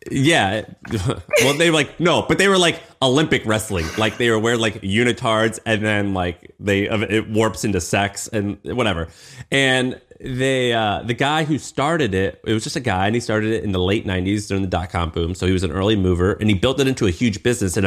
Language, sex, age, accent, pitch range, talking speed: English, male, 30-49, American, 95-120 Hz, 230 wpm